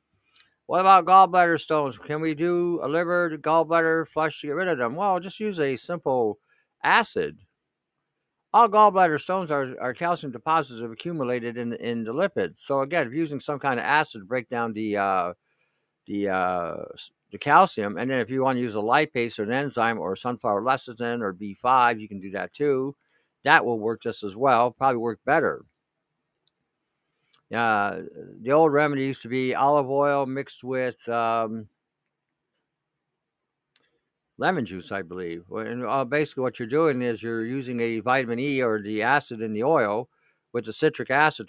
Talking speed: 180 wpm